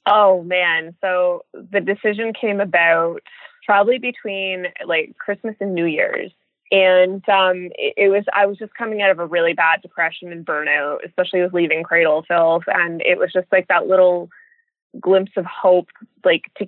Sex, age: female, 20-39